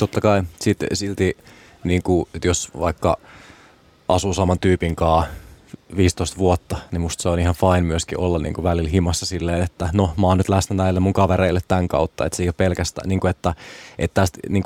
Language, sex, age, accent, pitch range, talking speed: Finnish, male, 20-39, native, 85-95 Hz, 185 wpm